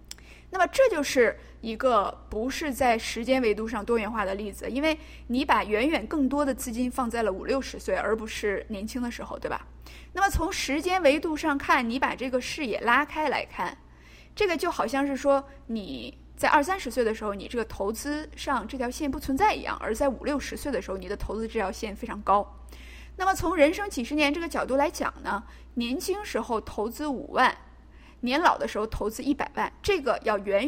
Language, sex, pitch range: Chinese, female, 225-295 Hz